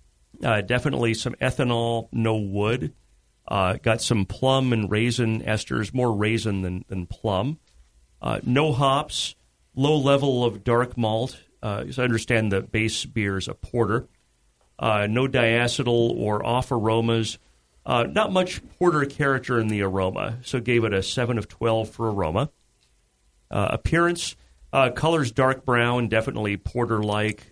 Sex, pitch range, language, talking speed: male, 95-125 Hz, English, 145 wpm